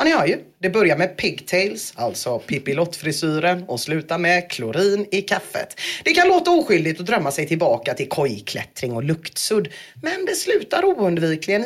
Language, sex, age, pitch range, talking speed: English, female, 30-49, 165-245 Hz, 145 wpm